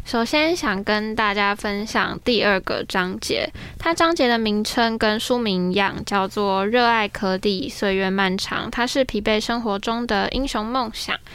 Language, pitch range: Chinese, 195-240 Hz